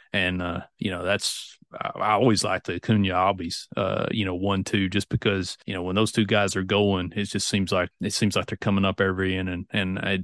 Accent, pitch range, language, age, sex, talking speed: American, 95-105 Hz, English, 30-49, male, 245 wpm